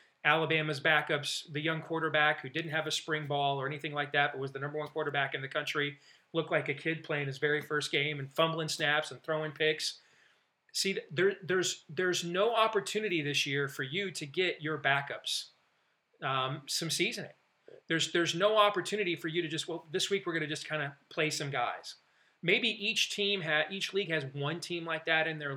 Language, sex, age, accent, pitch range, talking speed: English, male, 40-59, American, 150-195 Hz, 210 wpm